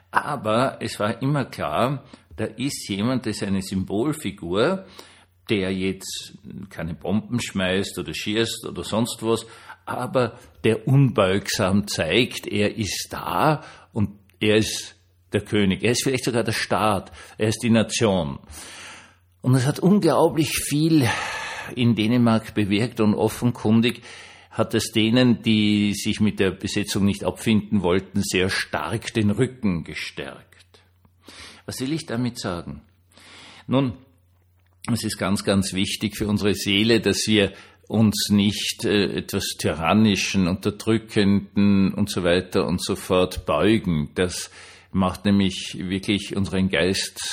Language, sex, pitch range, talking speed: German, male, 95-115 Hz, 135 wpm